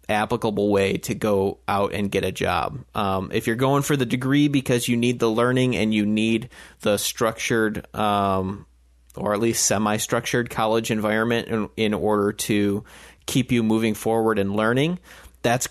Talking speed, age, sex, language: 170 wpm, 30-49, male, English